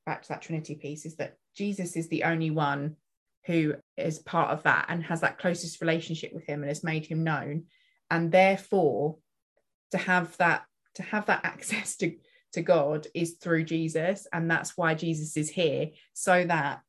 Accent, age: British, 20-39